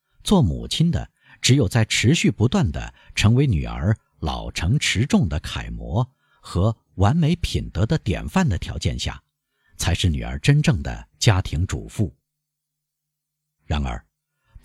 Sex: male